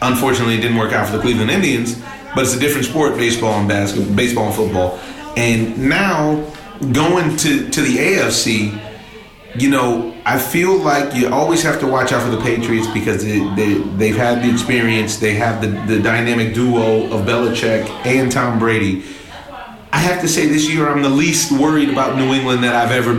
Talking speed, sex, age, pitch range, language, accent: 195 wpm, male, 30-49, 115-150 Hz, English, American